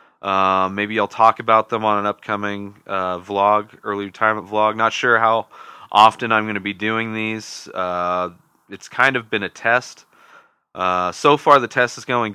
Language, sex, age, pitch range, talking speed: English, male, 20-39, 95-110 Hz, 185 wpm